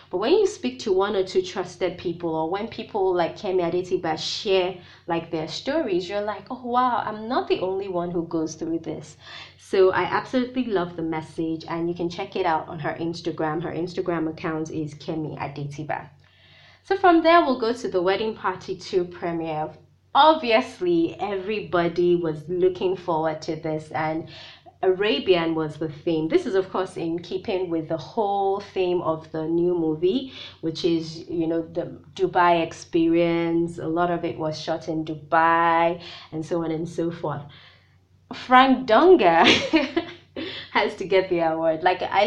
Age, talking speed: 20-39, 170 wpm